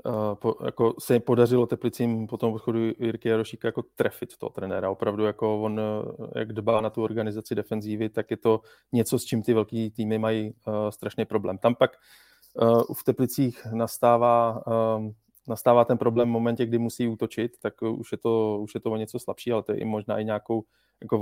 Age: 20-39